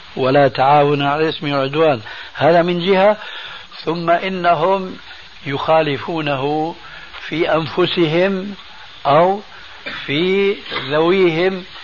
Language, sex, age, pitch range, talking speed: Arabic, male, 60-79, 140-175 Hz, 80 wpm